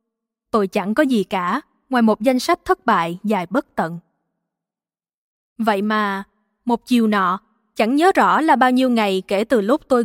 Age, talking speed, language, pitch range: 20-39, 180 wpm, Vietnamese, 215-265 Hz